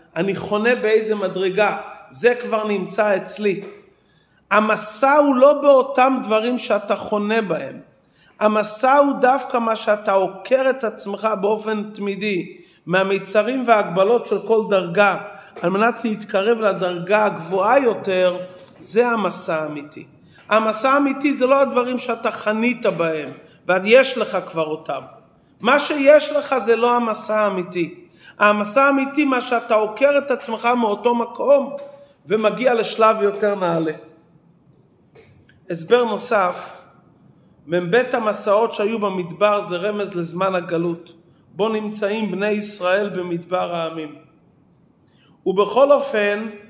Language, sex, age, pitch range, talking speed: English, male, 40-59, 180-230 Hz, 110 wpm